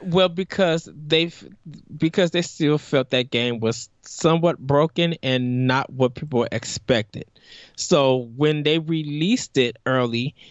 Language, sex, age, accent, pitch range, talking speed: English, male, 20-39, American, 130-180 Hz, 130 wpm